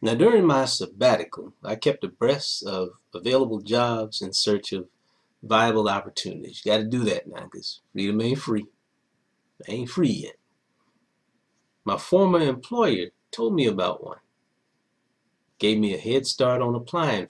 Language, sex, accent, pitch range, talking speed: English, male, American, 105-150 Hz, 150 wpm